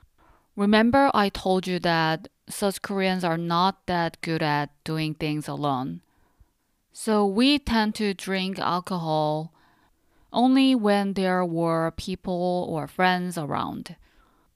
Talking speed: 120 wpm